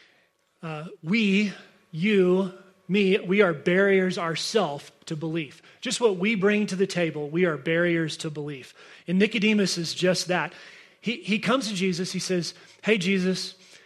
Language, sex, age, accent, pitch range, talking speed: English, male, 30-49, American, 170-200 Hz, 155 wpm